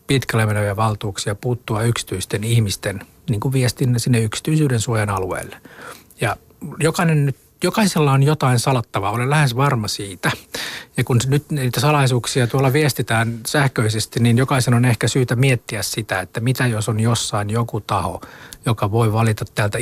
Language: Finnish